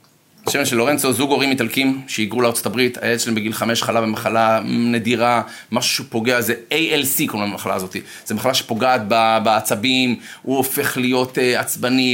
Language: Hebrew